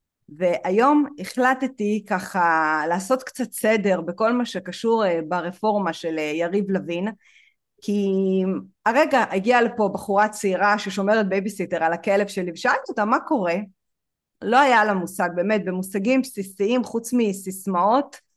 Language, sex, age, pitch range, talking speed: Hebrew, female, 30-49, 190-235 Hz, 120 wpm